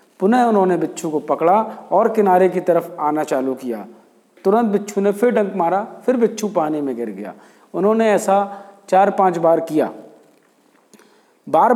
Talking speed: 160 wpm